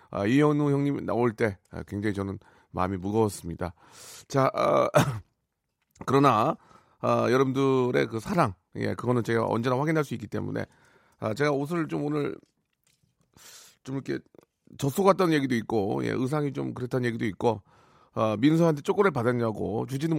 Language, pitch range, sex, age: Korean, 105-145 Hz, male, 40-59